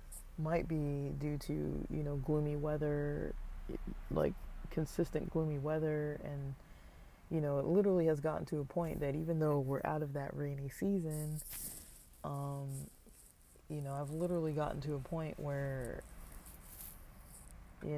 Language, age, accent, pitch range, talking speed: English, 20-39, American, 135-165 Hz, 140 wpm